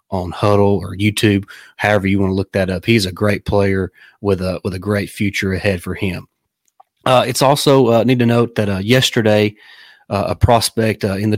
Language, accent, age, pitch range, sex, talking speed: English, American, 30-49, 100-110 Hz, male, 210 wpm